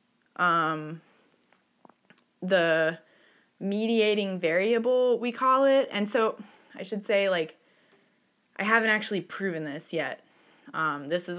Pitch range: 160-200 Hz